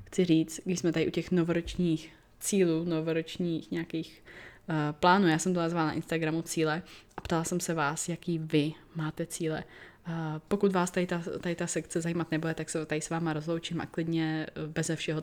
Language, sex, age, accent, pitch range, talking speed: Czech, female, 20-39, native, 160-180 Hz, 180 wpm